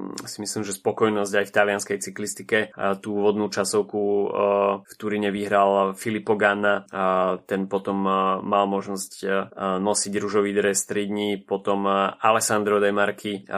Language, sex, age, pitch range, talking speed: Slovak, male, 20-39, 95-105 Hz, 125 wpm